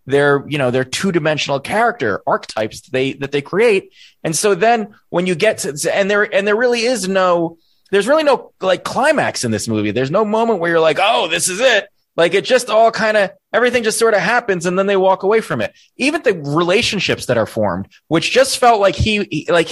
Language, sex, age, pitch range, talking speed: English, male, 30-49, 130-215 Hz, 230 wpm